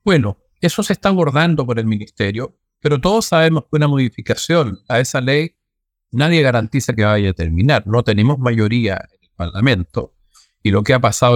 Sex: male